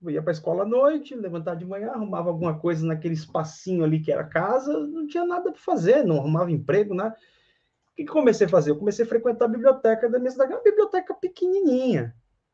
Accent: Brazilian